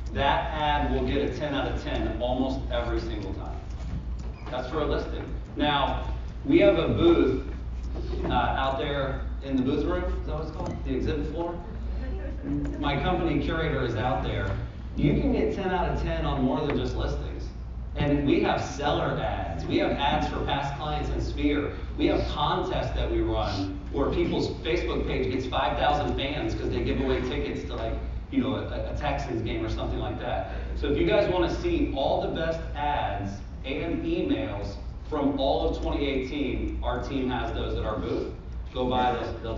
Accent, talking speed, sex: American, 190 wpm, male